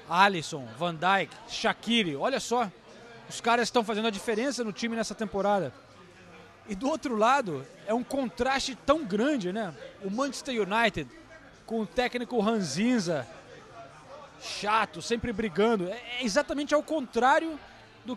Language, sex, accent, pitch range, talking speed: Portuguese, male, Brazilian, 195-250 Hz, 140 wpm